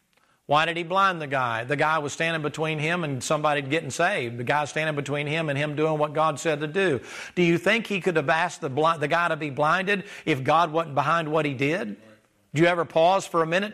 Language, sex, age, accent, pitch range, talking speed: English, male, 50-69, American, 140-165 Hz, 245 wpm